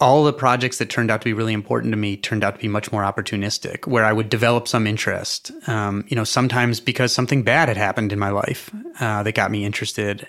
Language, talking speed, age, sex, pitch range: English, 245 wpm, 30-49, male, 110-130 Hz